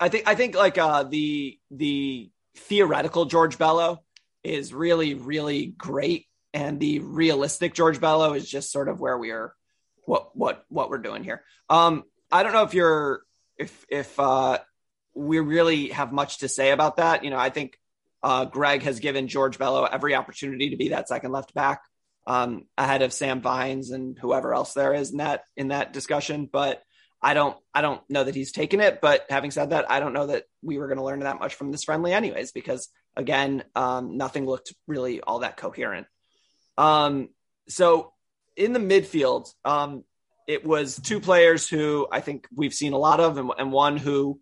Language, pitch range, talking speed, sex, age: English, 135-160 Hz, 195 wpm, male, 20-39